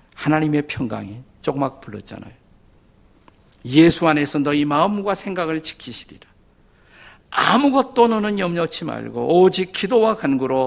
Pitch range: 125-180 Hz